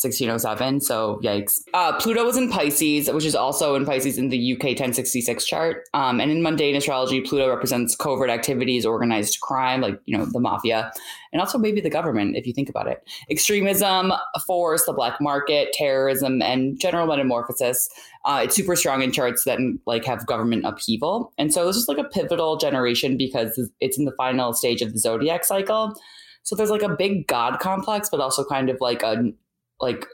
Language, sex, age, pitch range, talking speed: English, female, 10-29, 130-195 Hz, 190 wpm